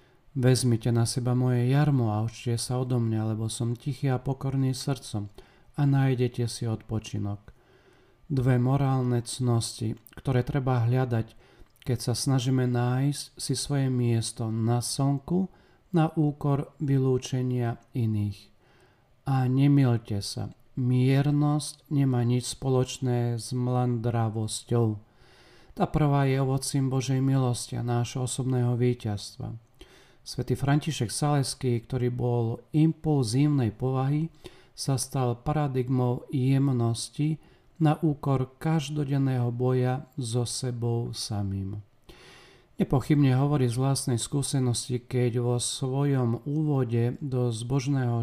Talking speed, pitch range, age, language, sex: 110 wpm, 120-135 Hz, 40-59, Slovak, male